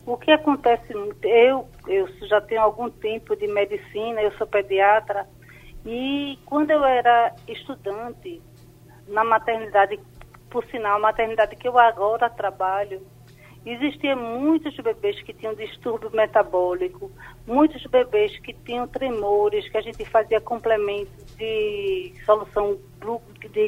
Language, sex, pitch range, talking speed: Portuguese, female, 210-275 Hz, 120 wpm